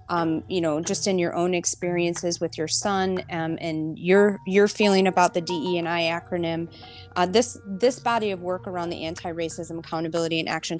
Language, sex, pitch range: English, female, 160-190 Hz